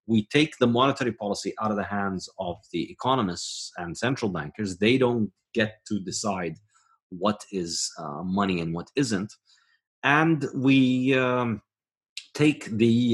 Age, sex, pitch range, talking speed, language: 30-49, male, 100-135 Hz, 145 wpm, English